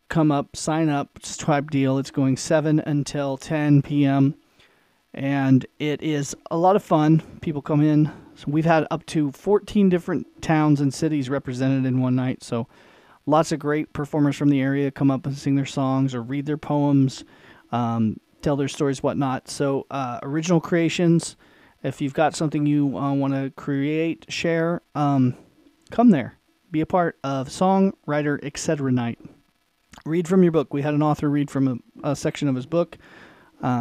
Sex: male